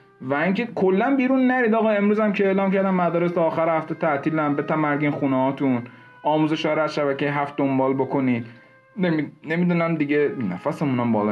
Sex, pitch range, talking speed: male, 140-185 Hz, 165 wpm